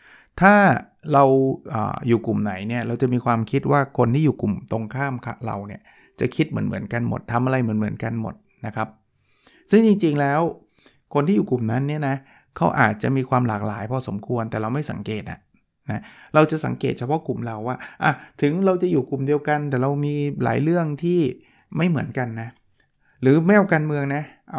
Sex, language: male, Thai